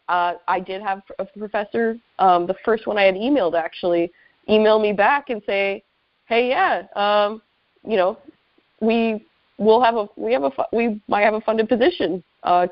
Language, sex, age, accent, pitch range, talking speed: English, female, 20-39, American, 180-215 Hz, 180 wpm